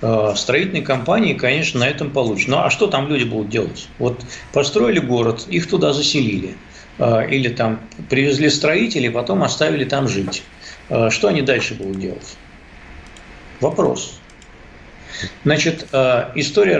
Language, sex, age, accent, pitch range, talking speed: Russian, male, 50-69, native, 115-150 Hz, 125 wpm